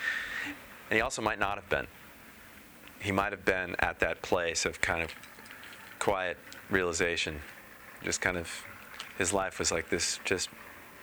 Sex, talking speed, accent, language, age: male, 150 wpm, American, English, 30-49